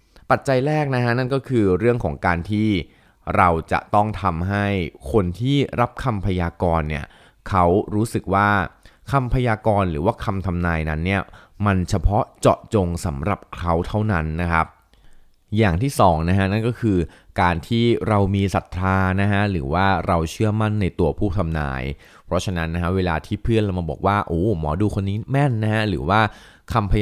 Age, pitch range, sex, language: 20-39, 85-105 Hz, male, Thai